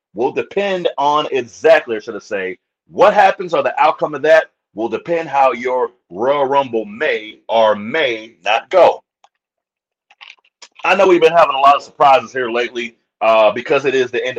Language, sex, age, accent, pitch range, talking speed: English, male, 30-49, American, 115-170 Hz, 175 wpm